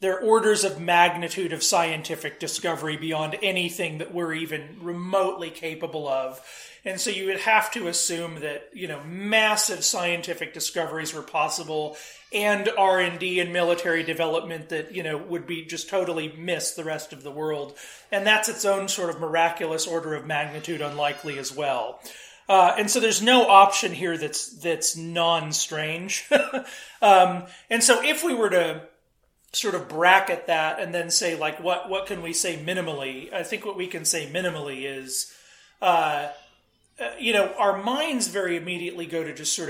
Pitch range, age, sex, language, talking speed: 160-200 Hz, 30-49, male, English, 170 wpm